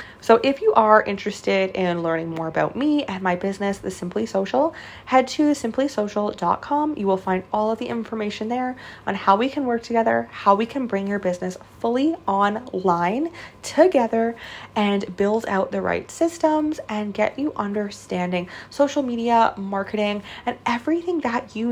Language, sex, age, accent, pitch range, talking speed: English, female, 20-39, American, 190-255 Hz, 165 wpm